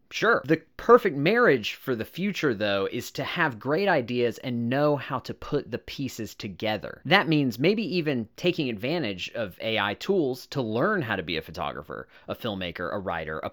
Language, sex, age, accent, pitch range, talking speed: English, male, 30-49, American, 105-155 Hz, 185 wpm